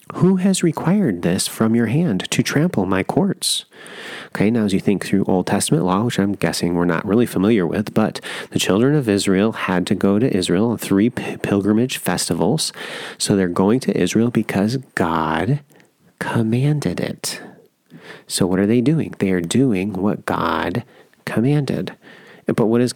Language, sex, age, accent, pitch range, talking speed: English, male, 30-49, American, 100-140 Hz, 170 wpm